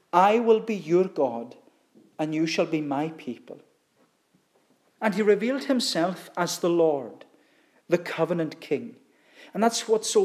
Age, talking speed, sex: 40-59, 145 wpm, male